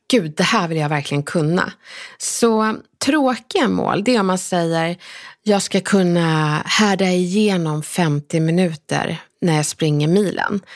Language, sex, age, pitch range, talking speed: Swedish, female, 30-49, 165-225 Hz, 145 wpm